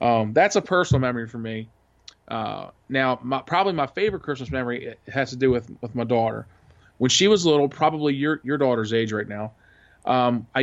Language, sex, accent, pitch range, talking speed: English, male, American, 115-135 Hz, 200 wpm